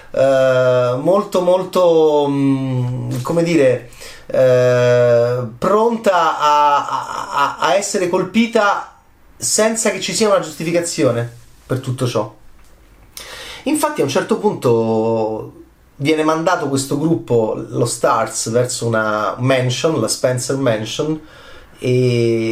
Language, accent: Italian, native